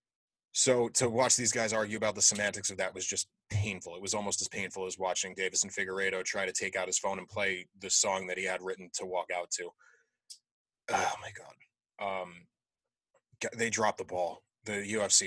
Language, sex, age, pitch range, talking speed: English, male, 20-39, 95-105 Hz, 205 wpm